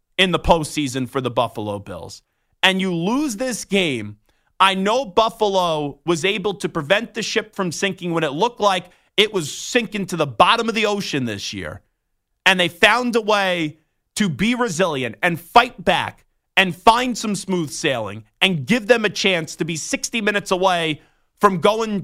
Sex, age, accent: male, 30-49, American